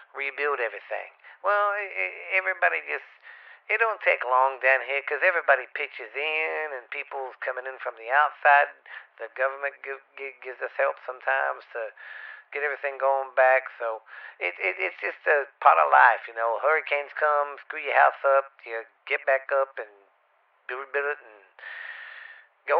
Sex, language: male, English